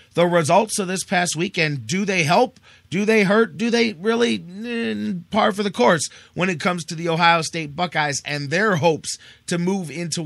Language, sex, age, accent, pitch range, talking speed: English, male, 30-49, American, 150-185 Hz, 200 wpm